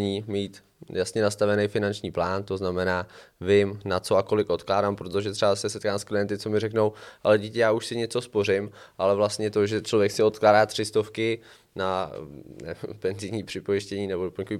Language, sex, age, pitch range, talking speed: Czech, male, 20-39, 95-110 Hz, 175 wpm